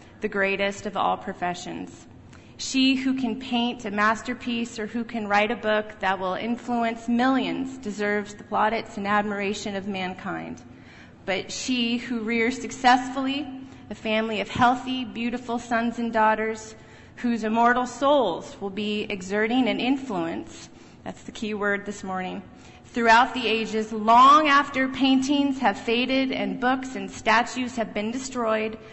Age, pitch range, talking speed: 30-49, 205-245 Hz, 145 wpm